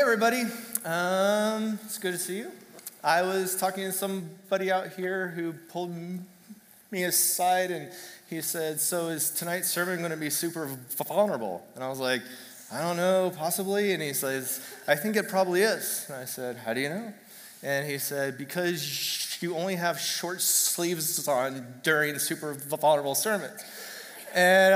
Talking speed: 170 wpm